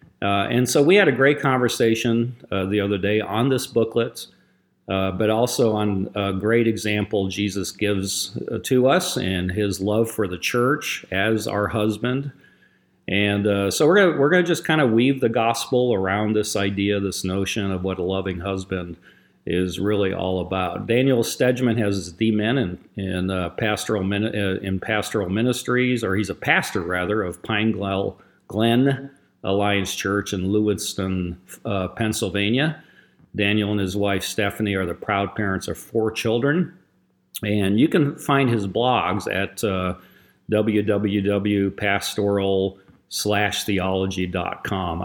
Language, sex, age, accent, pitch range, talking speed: English, male, 40-59, American, 95-115 Hz, 145 wpm